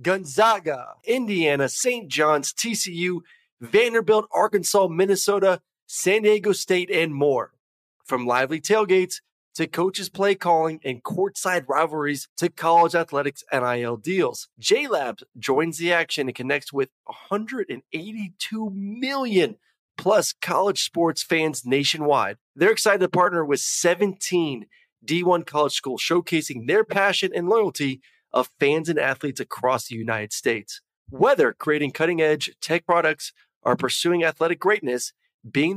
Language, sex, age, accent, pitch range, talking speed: English, male, 30-49, American, 145-190 Hz, 125 wpm